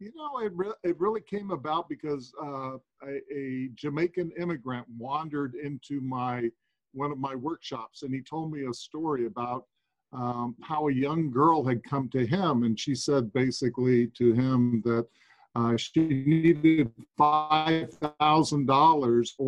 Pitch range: 130-160 Hz